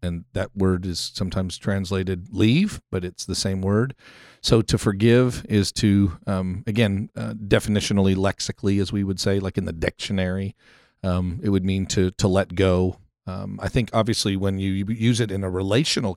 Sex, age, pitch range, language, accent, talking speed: male, 40-59, 95-115 Hz, English, American, 180 wpm